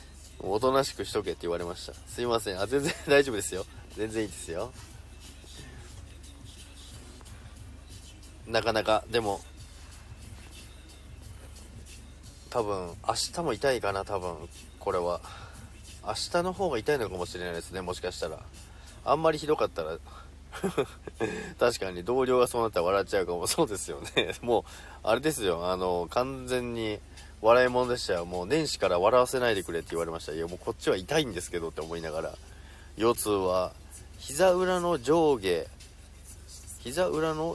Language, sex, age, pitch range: Japanese, male, 40-59, 80-120 Hz